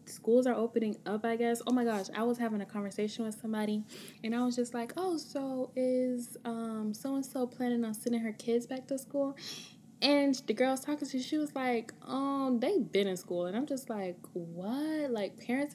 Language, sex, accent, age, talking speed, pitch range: English, female, American, 10-29, 215 wpm, 185-235 Hz